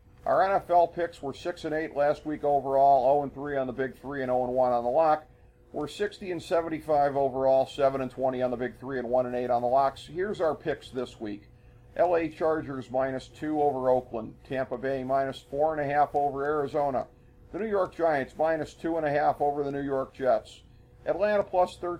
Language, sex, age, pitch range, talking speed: English, male, 50-69, 130-160 Hz, 175 wpm